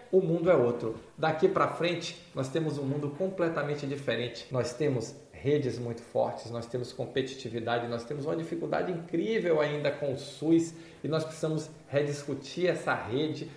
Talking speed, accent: 160 wpm, Brazilian